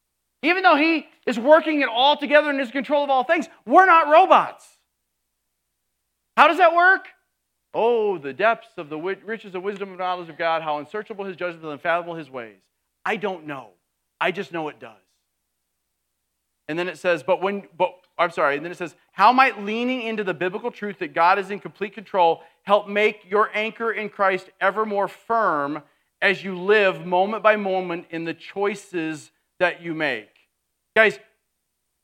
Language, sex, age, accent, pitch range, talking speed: English, male, 40-59, American, 170-225 Hz, 180 wpm